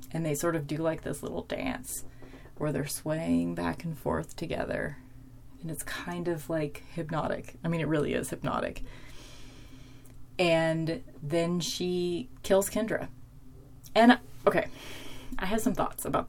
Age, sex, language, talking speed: 30-49, female, English, 145 wpm